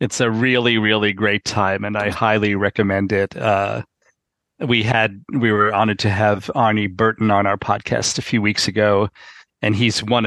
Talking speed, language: 180 wpm, English